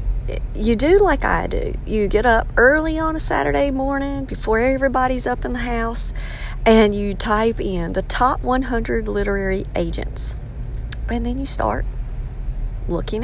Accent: American